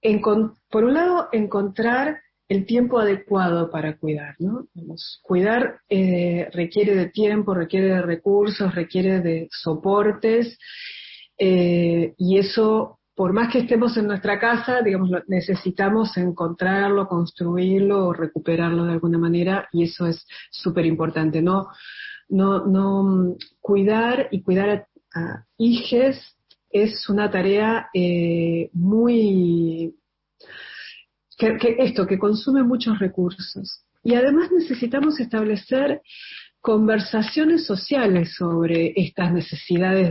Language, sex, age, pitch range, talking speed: Spanish, female, 40-59, 175-230 Hz, 115 wpm